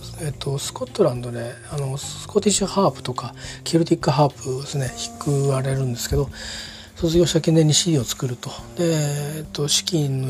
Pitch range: 120-150 Hz